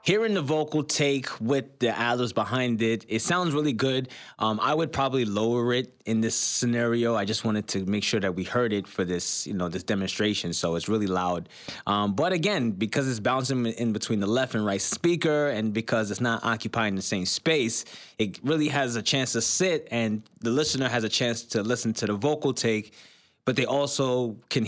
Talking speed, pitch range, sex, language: 210 wpm, 105-130 Hz, male, English